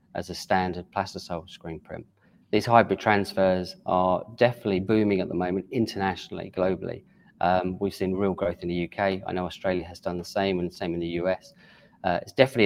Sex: male